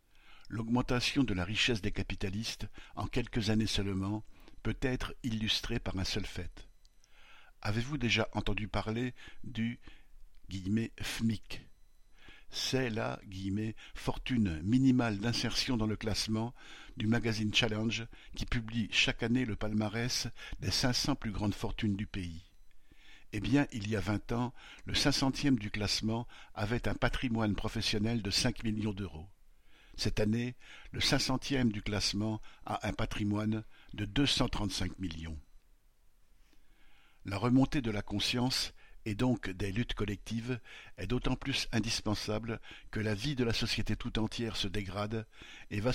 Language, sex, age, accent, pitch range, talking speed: French, male, 60-79, French, 105-120 Hz, 140 wpm